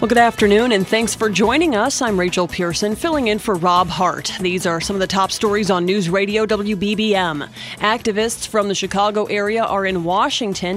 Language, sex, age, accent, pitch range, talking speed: English, female, 30-49, American, 175-215 Hz, 195 wpm